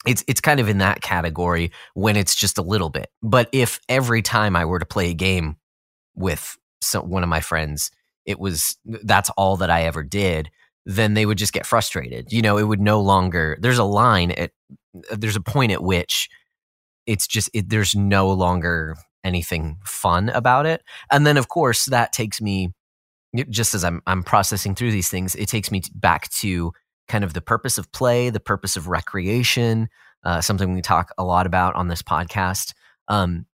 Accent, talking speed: American, 195 wpm